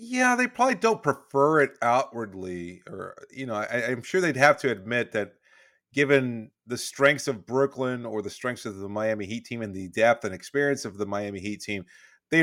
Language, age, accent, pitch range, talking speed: English, 30-49, American, 110-140 Hz, 205 wpm